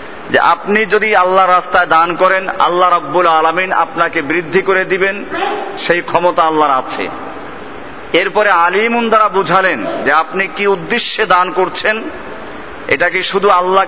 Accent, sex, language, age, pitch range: native, male, Bengali, 50-69, 160-195 Hz